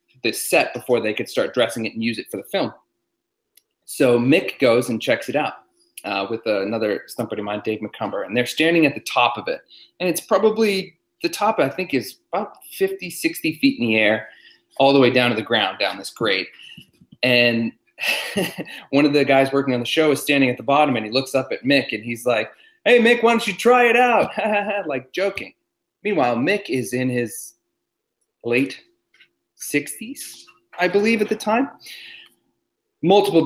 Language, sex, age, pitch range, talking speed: English, male, 30-49, 125-195 Hz, 195 wpm